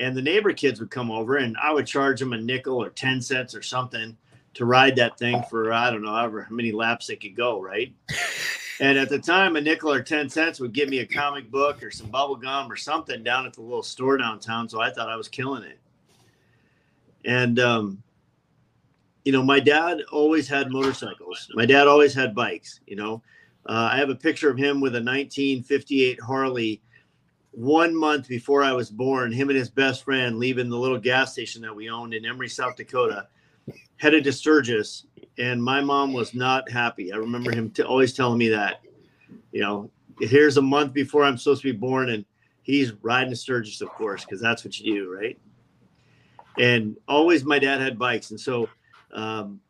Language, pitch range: English, 115-140 Hz